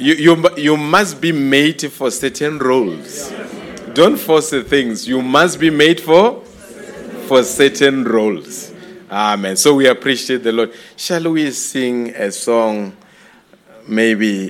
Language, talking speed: English, 135 wpm